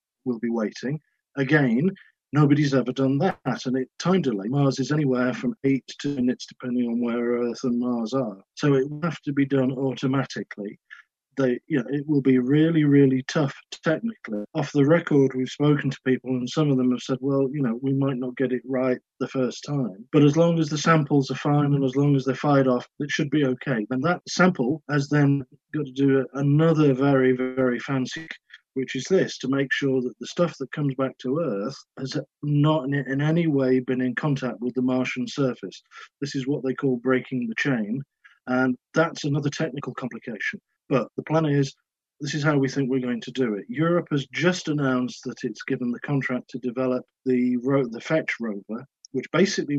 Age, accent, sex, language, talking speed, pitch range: 40-59, British, male, English, 205 wpm, 130-145 Hz